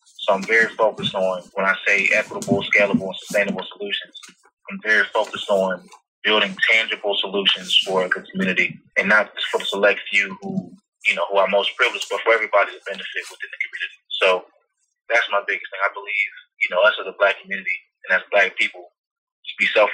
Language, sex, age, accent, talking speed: English, male, 20-39, American, 200 wpm